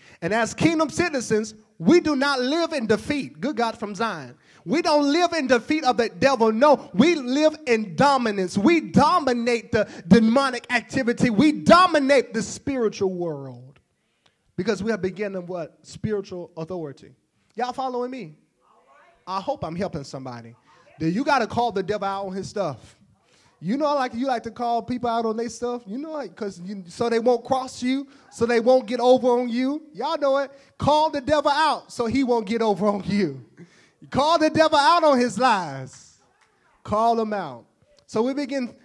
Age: 30-49